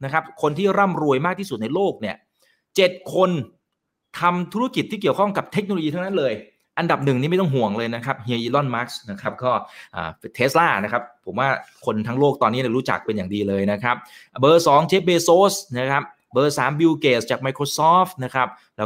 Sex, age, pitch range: male, 20-39, 115-165 Hz